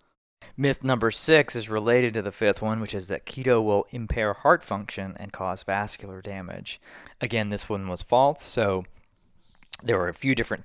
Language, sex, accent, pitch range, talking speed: English, male, American, 95-115 Hz, 180 wpm